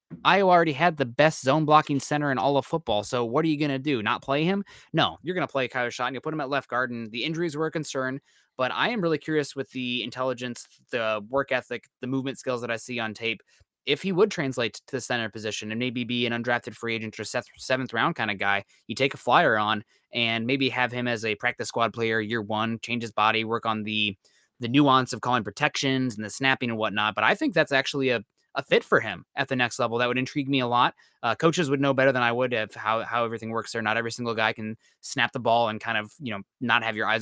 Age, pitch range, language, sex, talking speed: 20-39, 115-140 Hz, English, male, 265 wpm